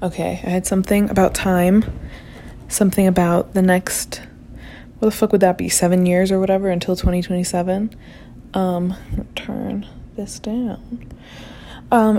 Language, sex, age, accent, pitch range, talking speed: English, female, 20-39, American, 180-220 Hz, 135 wpm